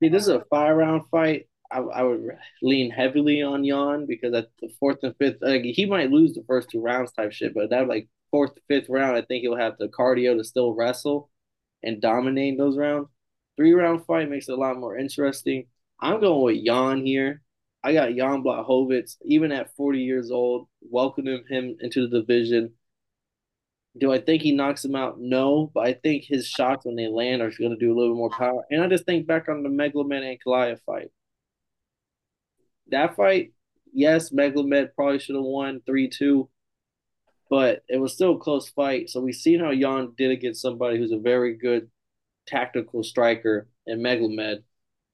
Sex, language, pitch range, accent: male, English, 120-140 Hz, American